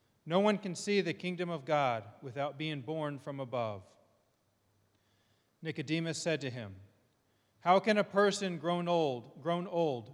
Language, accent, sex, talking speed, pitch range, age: English, American, male, 150 wpm, 115-160 Hz, 40-59